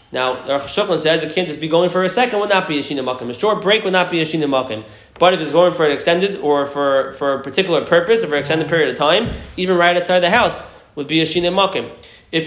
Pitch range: 155-200 Hz